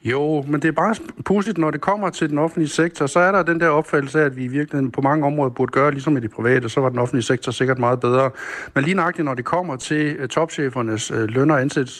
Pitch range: 120-150 Hz